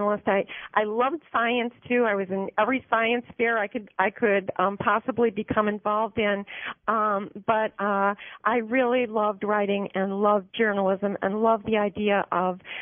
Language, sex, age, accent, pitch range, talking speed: English, female, 40-59, American, 200-230 Hz, 165 wpm